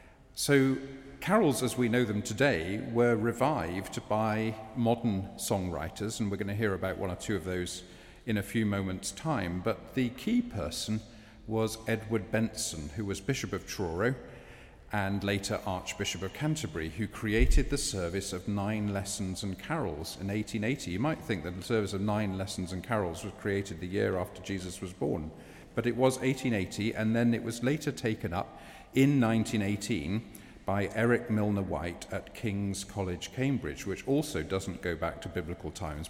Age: 40-59